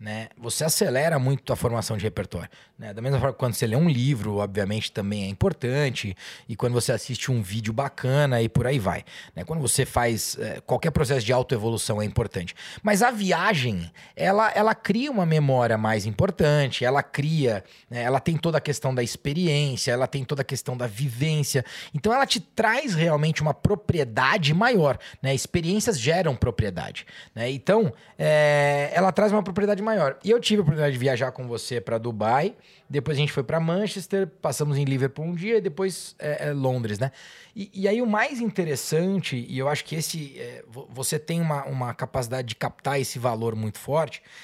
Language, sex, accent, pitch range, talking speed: Portuguese, male, Brazilian, 120-175 Hz, 180 wpm